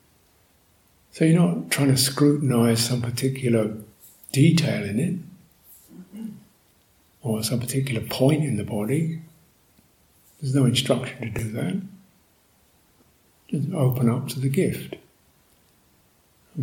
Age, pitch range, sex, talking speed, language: 50-69, 115-145 Hz, male, 110 wpm, English